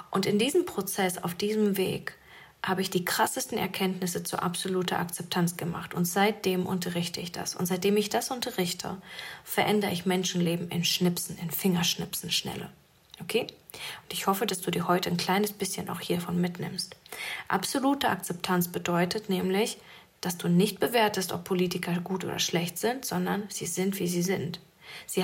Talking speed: 165 wpm